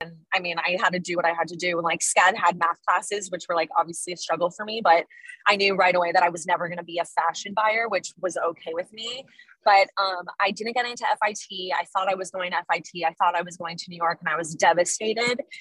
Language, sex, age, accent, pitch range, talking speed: English, female, 20-39, American, 175-210 Hz, 275 wpm